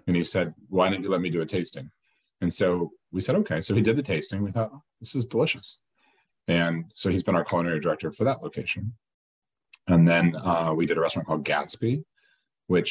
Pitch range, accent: 75-100 Hz, American